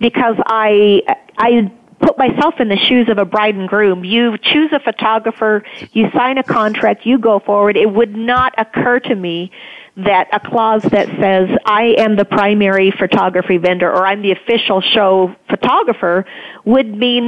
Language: English